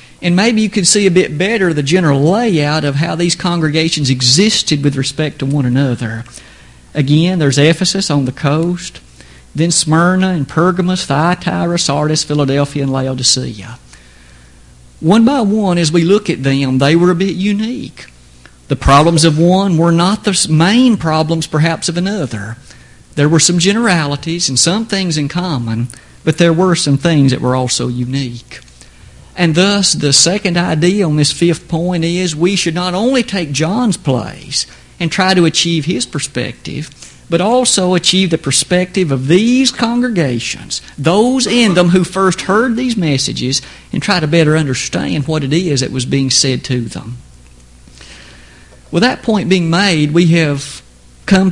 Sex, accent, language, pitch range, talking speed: male, American, English, 135-180 Hz, 165 wpm